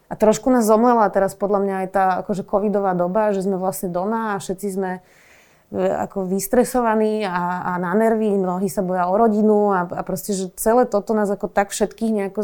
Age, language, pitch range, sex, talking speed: 20-39, Slovak, 185-215 Hz, female, 200 wpm